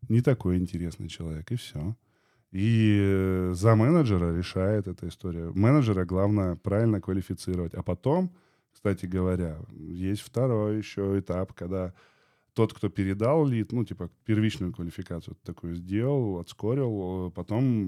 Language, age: Russian, 20-39